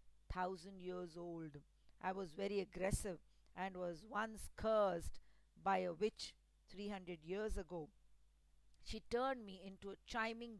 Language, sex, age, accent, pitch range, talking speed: English, female, 50-69, Indian, 180-225 Hz, 135 wpm